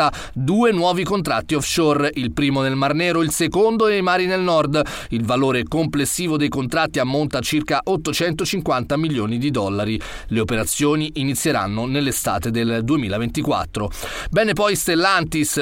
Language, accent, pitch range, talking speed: Italian, native, 135-170 Hz, 140 wpm